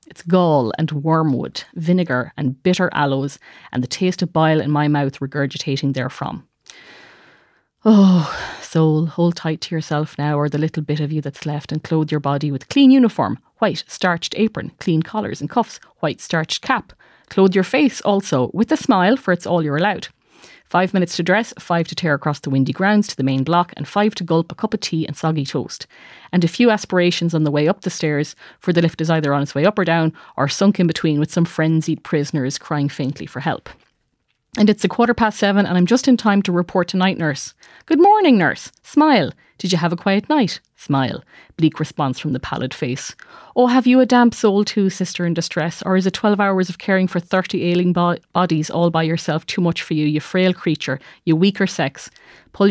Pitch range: 155-190 Hz